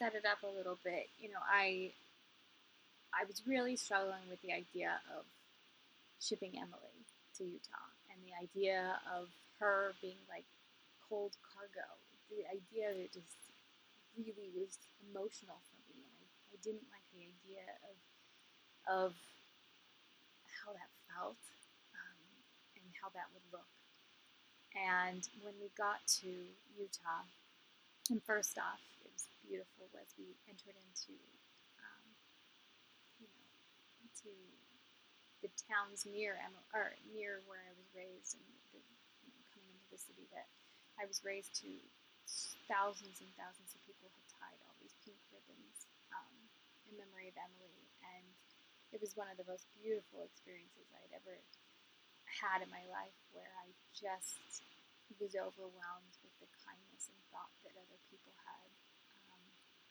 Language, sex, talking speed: English, female, 145 wpm